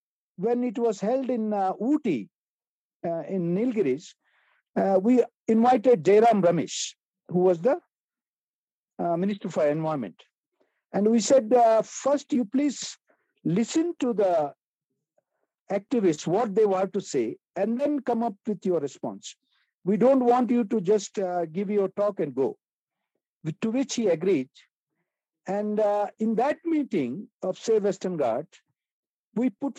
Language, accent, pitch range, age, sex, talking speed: Telugu, native, 195-255 Hz, 60-79, male, 145 wpm